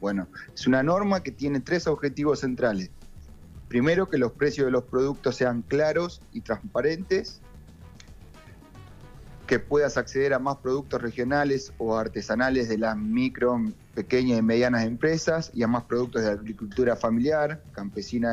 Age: 30-49